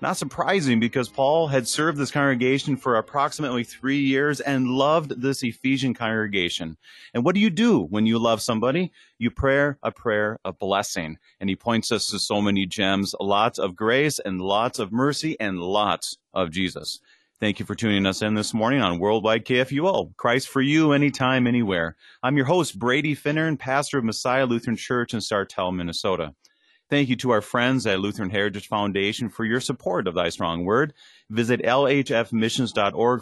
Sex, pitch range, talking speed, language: male, 105-135 Hz, 175 wpm, English